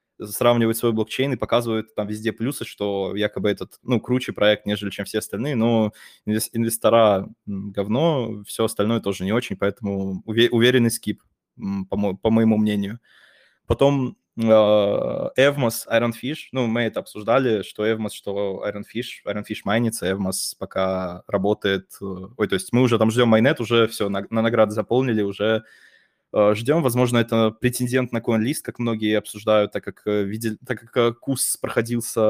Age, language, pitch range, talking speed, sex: 20-39, Russian, 105-120 Hz, 150 wpm, male